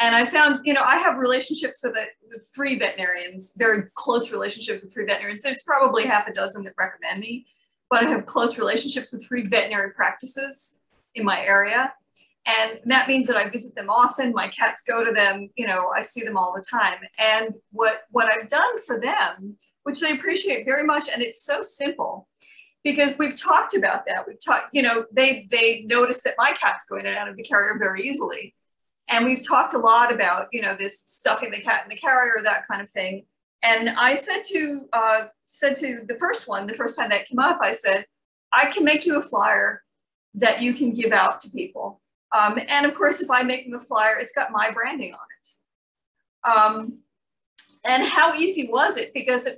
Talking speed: 210 wpm